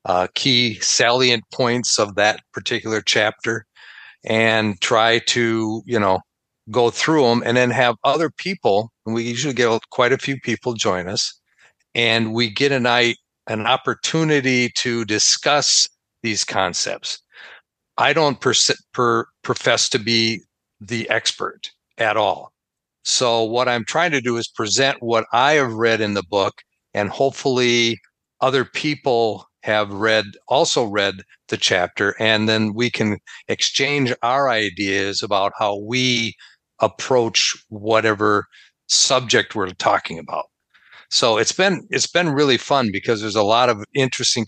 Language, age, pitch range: English, 50-69, 110-125 Hz